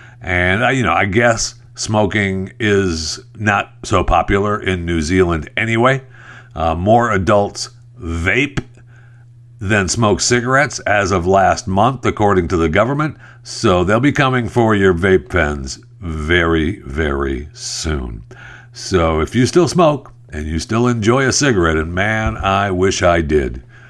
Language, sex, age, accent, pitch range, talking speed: English, male, 60-79, American, 80-120 Hz, 145 wpm